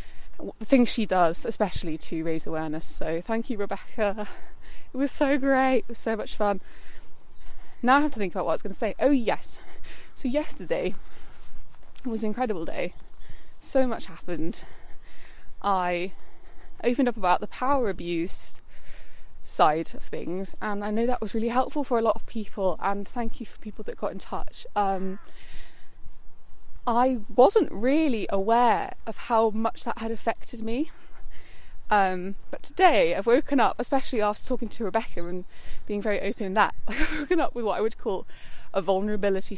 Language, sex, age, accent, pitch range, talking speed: English, female, 20-39, British, 180-240 Hz, 175 wpm